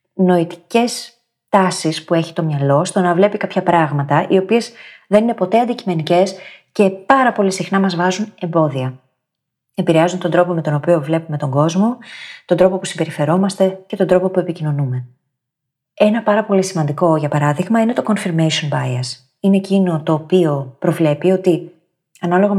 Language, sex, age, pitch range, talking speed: Greek, female, 30-49, 155-200 Hz, 155 wpm